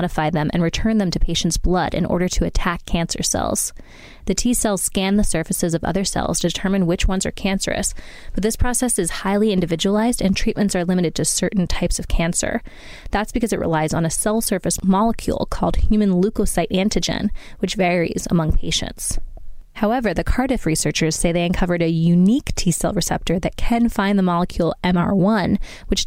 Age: 20-39